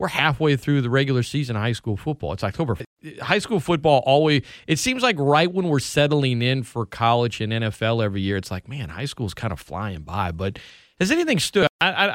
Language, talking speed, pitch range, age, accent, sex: English, 215 wpm, 115-140 Hz, 30-49, American, male